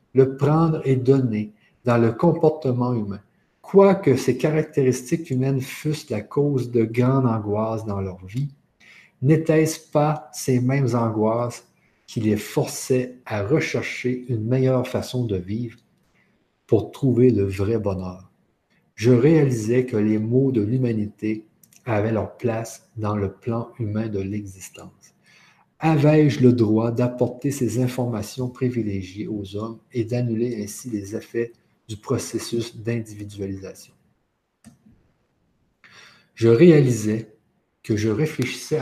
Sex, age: male, 50-69